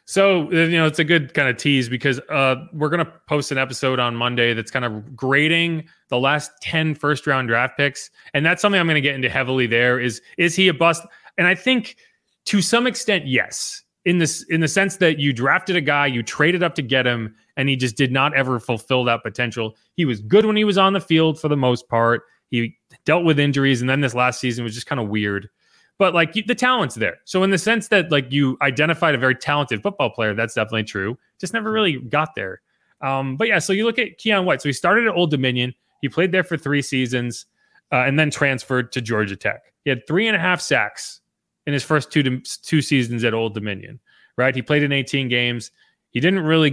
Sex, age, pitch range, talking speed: male, 30-49, 125-170 Hz, 235 wpm